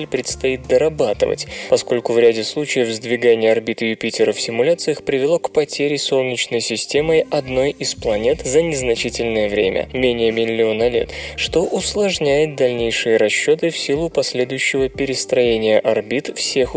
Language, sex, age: Russian, male, 20-39